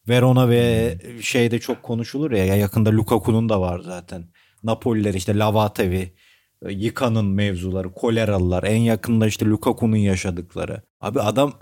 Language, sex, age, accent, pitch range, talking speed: Turkish, male, 40-59, native, 100-125 Hz, 125 wpm